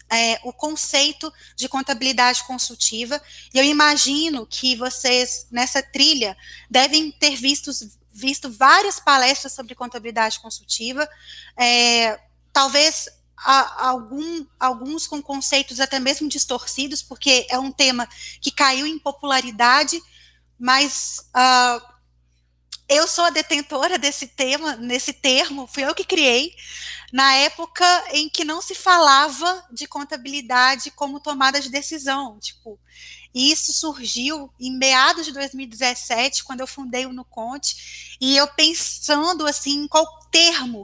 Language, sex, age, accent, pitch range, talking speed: Portuguese, female, 20-39, Brazilian, 250-295 Hz, 120 wpm